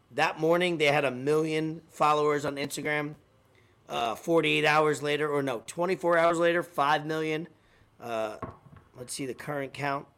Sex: male